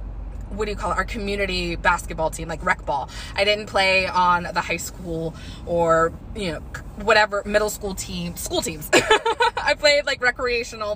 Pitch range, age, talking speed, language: 190-235 Hz, 20-39, 175 wpm, English